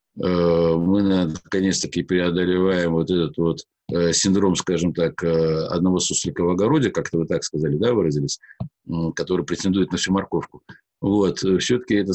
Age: 50-69